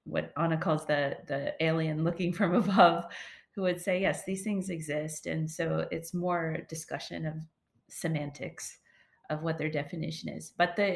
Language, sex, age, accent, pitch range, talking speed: English, female, 30-49, American, 155-190 Hz, 165 wpm